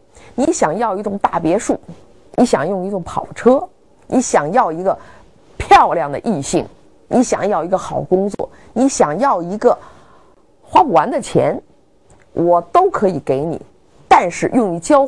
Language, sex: Chinese, female